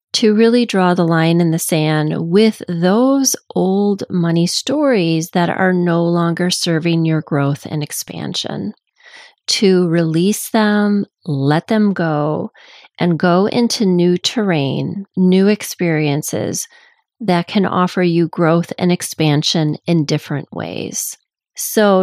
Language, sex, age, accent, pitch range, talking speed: English, female, 30-49, American, 155-200 Hz, 125 wpm